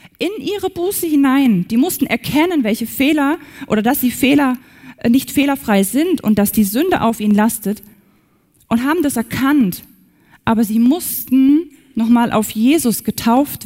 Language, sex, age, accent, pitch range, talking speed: German, female, 20-39, German, 200-255 Hz, 155 wpm